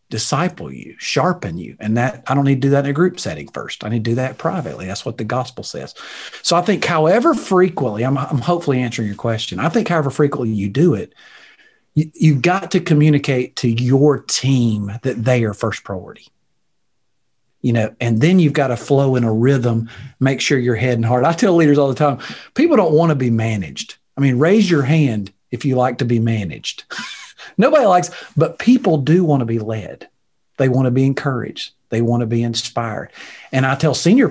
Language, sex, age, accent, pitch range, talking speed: English, male, 40-59, American, 115-160 Hz, 215 wpm